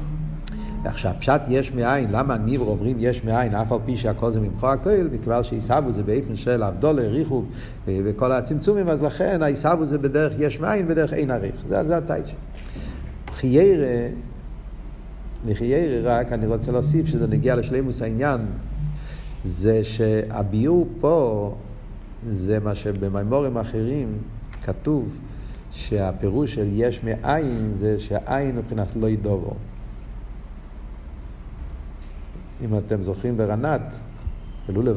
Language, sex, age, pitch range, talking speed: Hebrew, male, 50-69, 100-125 Hz, 115 wpm